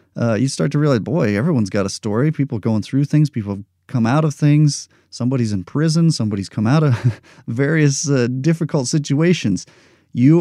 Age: 30-49